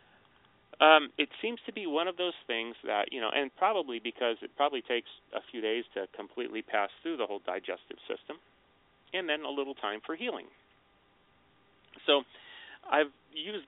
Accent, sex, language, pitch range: American, male, English, 115-150 Hz